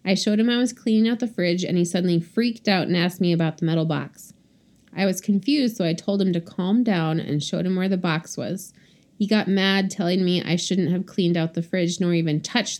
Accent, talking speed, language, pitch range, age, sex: American, 250 wpm, English, 170-205 Hz, 30-49, female